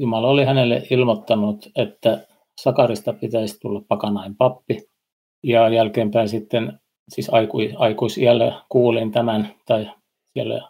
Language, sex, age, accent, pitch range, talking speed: Finnish, male, 50-69, native, 115-130 Hz, 105 wpm